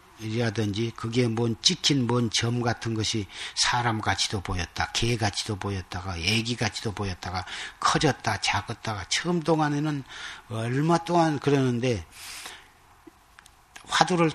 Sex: male